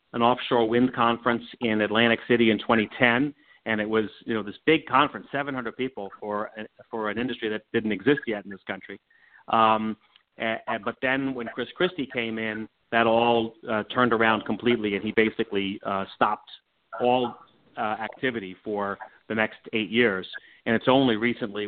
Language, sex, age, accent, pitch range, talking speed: English, male, 40-59, American, 105-120 Hz, 170 wpm